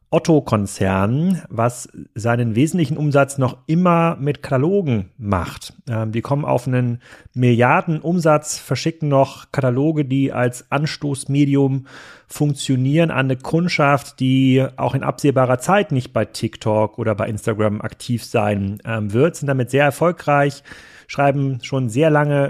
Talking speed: 130 wpm